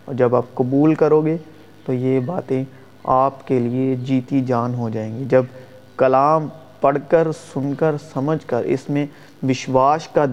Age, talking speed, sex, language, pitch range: 30-49, 170 wpm, male, Urdu, 125-155 Hz